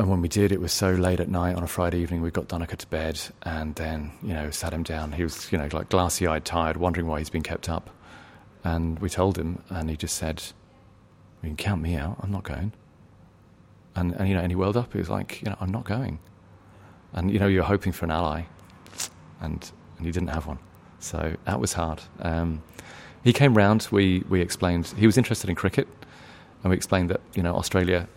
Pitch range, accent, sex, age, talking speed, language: 85-105 Hz, British, male, 30-49, 230 wpm, English